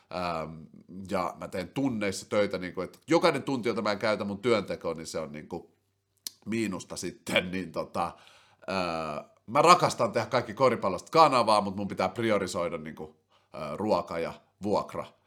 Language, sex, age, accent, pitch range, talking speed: Finnish, male, 30-49, native, 95-125 Hz, 165 wpm